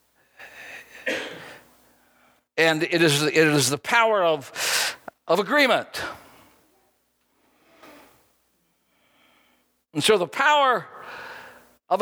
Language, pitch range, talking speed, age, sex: English, 165-270 Hz, 75 wpm, 60-79, male